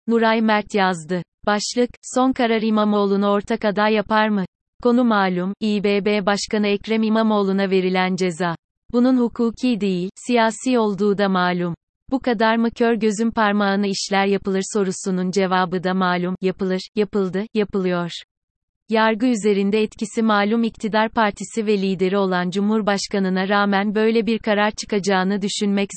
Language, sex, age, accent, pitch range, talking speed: Turkish, female, 30-49, native, 190-225 Hz, 130 wpm